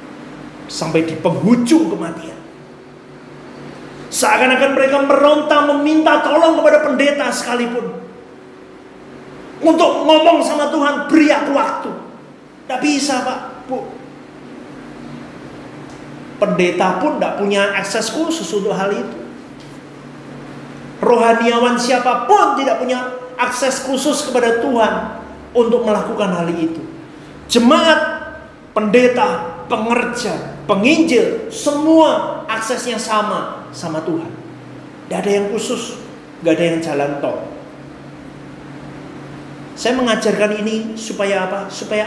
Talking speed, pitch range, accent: 95 wpm, 210-290 Hz, native